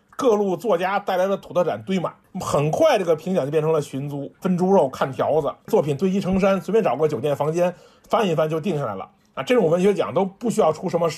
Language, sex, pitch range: Chinese, male, 150-210 Hz